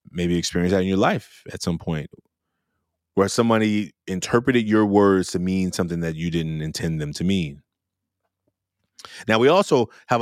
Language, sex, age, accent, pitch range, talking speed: English, male, 20-39, American, 100-120 Hz, 165 wpm